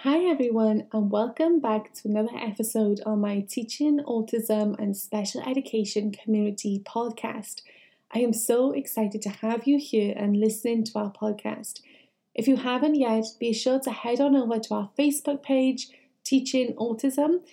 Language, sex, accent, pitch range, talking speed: English, female, British, 220-260 Hz, 160 wpm